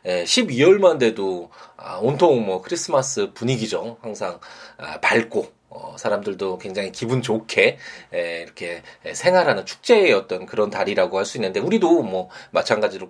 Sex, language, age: male, Korean, 20-39